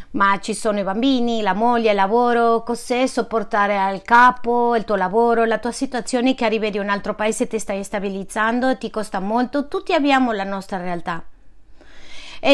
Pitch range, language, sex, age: 205-250 Hz, Spanish, female, 30-49